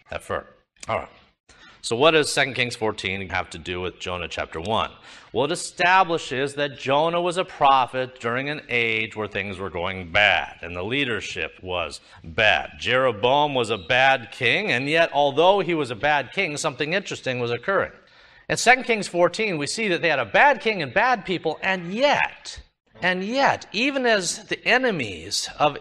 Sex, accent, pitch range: male, American, 135-215 Hz